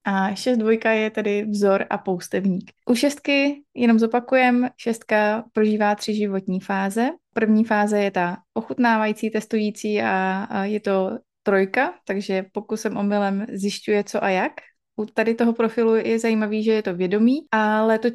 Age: 20-39